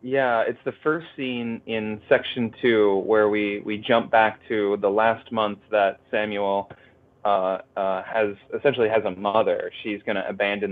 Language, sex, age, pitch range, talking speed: English, male, 20-39, 105-130 Hz, 170 wpm